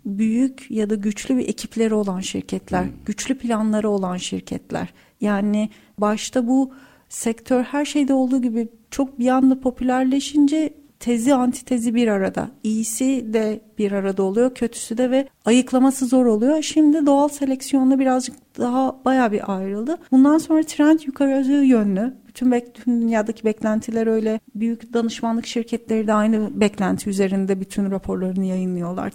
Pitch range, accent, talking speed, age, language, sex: 220-270 Hz, native, 140 wpm, 40-59, Turkish, female